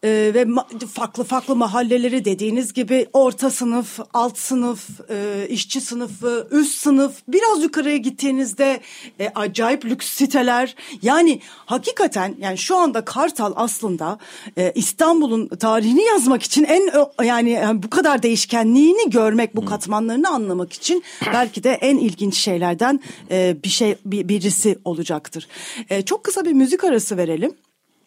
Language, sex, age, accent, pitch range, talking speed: Turkish, female, 40-59, native, 180-260 Hz, 135 wpm